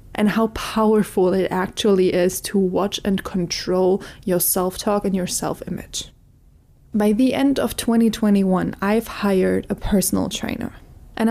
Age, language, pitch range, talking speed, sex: 20-39, English, 190-215 Hz, 140 wpm, female